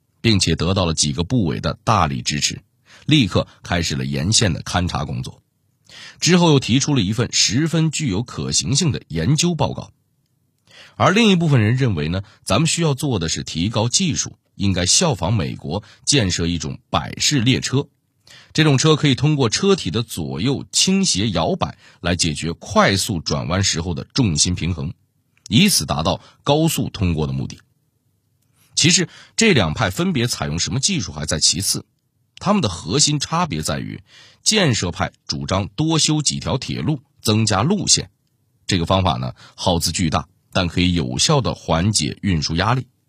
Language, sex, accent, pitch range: Chinese, male, native, 90-145 Hz